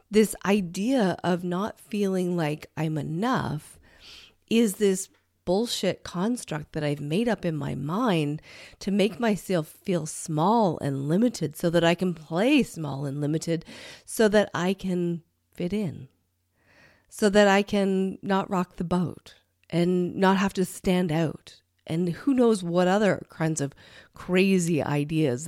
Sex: female